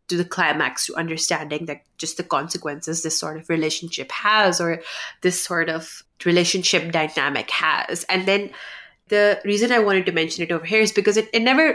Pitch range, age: 165-205 Hz, 30-49